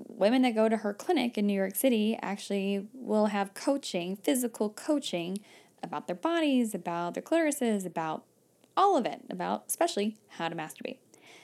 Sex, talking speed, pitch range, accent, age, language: female, 165 wpm, 190-245 Hz, American, 10-29, English